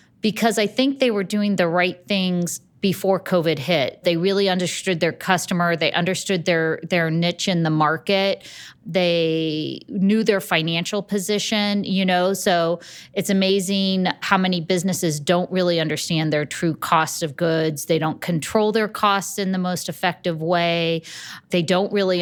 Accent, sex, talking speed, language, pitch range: American, female, 160 wpm, English, 160-190 Hz